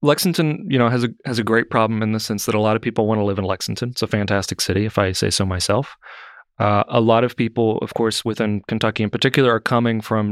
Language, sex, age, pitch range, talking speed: English, male, 30-49, 105-125 Hz, 260 wpm